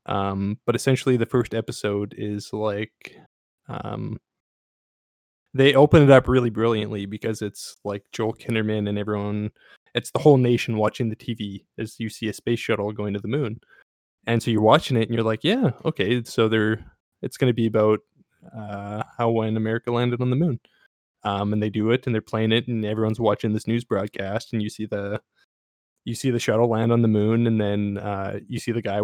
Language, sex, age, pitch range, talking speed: English, male, 20-39, 105-120 Hz, 205 wpm